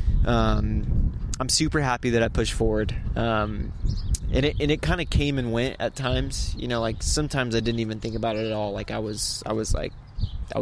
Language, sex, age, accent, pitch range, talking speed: English, male, 20-39, American, 105-125 Hz, 215 wpm